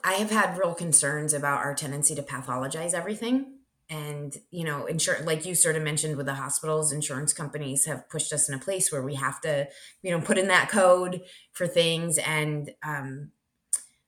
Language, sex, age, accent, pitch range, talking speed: English, female, 20-39, American, 145-180 Hz, 190 wpm